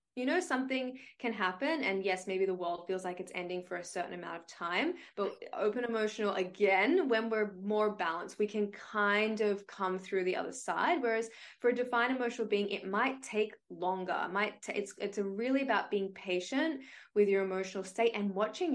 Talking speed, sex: 200 wpm, female